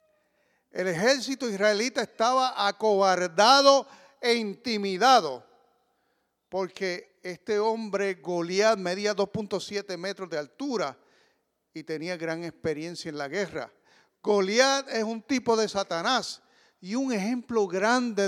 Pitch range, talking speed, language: 160-215 Hz, 110 wpm, English